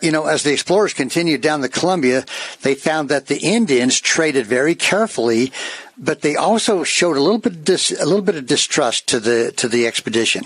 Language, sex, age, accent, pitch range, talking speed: English, male, 60-79, American, 130-180 Hz, 205 wpm